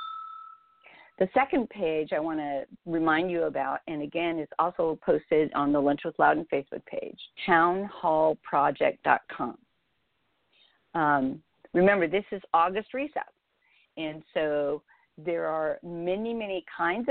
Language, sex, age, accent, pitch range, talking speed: English, female, 50-69, American, 160-225 Hz, 125 wpm